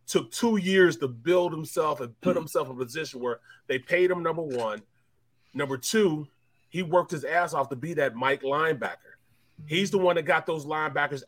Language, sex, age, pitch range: English, male, 30-49, 135-170 Hz